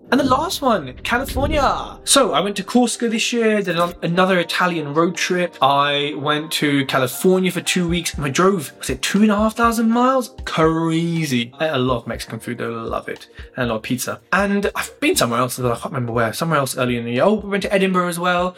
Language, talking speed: English, 230 wpm